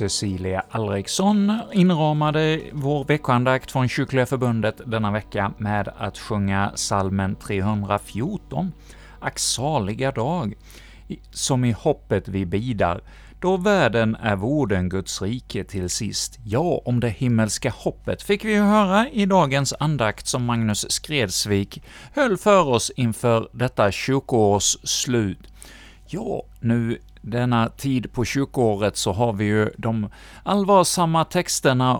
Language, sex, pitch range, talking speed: Swedish, male, 105-145 Hz, 120 wpm